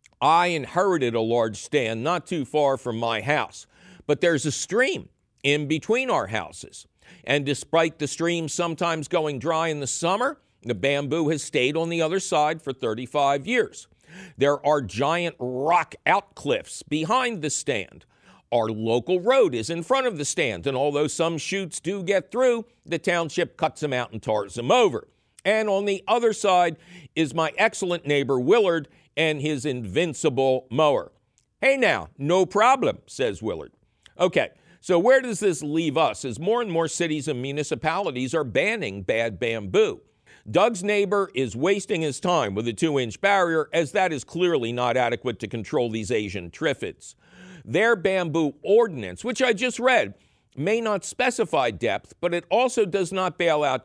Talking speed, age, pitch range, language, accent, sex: 165 wpm, 50-69, 140-195 Hz, English, American, male